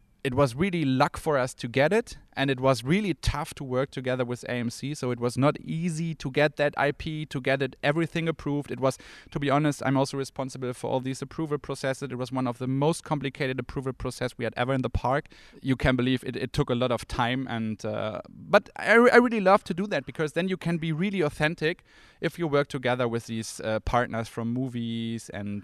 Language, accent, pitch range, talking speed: Dutch, German, 120-150 Hz, 230 wpm